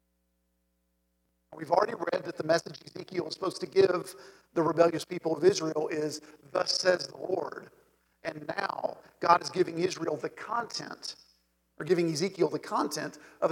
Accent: American